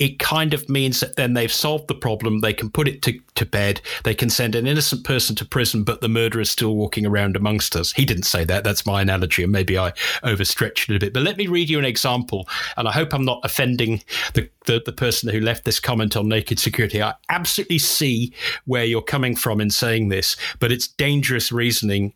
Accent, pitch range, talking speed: British, 110-135 Hz, 235 wpm